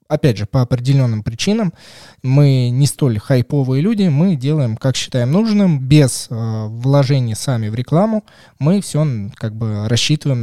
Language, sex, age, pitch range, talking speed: Russian, male, 20-39, 120-155 Hz, 150 wpm